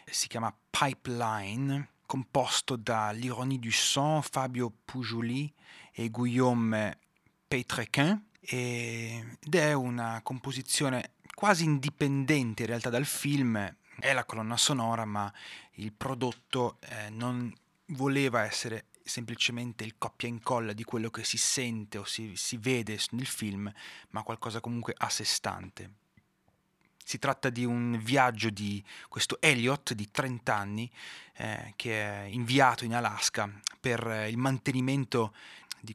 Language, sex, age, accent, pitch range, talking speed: Italian, male, 30-49, native, 110-130 Hz, 125 wpm